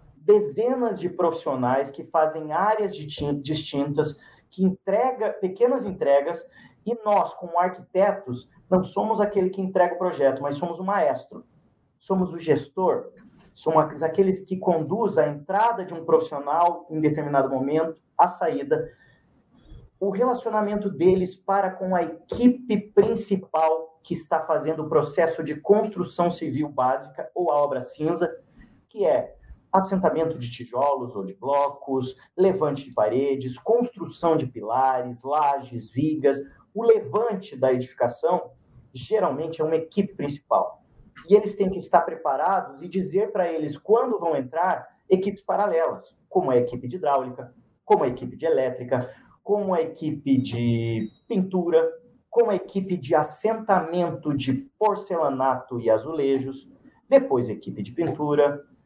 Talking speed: 135 wpm